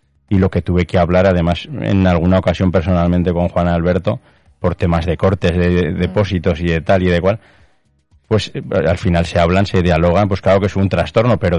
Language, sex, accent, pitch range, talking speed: Spanish, male, Spanish, 90-100 Hz, 205 wpm